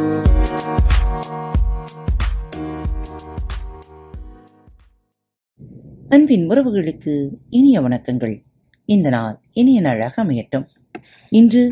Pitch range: 125-190 Hz